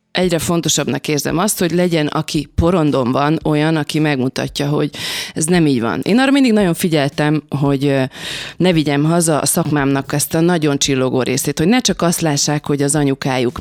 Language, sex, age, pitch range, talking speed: Hungarian, female, 30-49, 145-175 Hz, 180 wpm